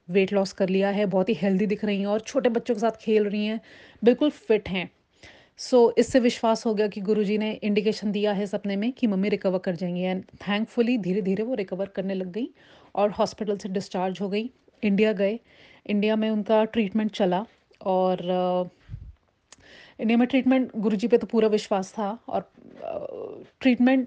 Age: 30-49